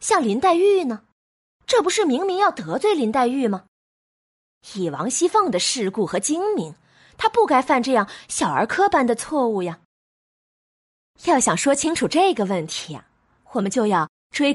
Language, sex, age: Chinese, female, 20-39